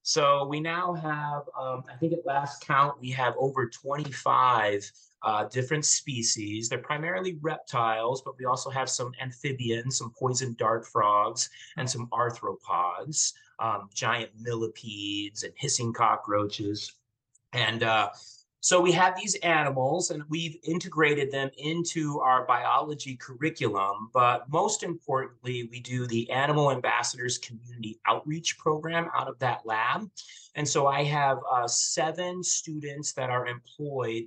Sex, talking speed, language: male, 140 wpm, English